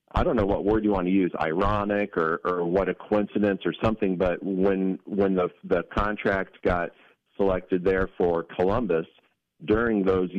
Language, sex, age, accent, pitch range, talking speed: English, male, 40-59, American, 85-100 Hz, 175 wpm